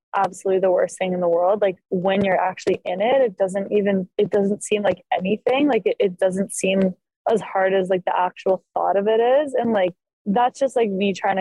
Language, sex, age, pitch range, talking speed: English, female, 10-29, 190-225 Hz, 225 wpm